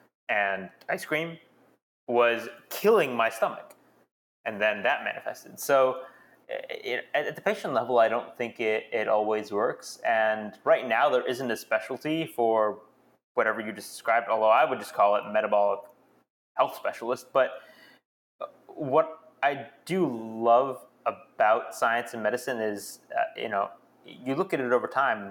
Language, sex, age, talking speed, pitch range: English, male, 20-39, 150 wpm, 105-130 Hz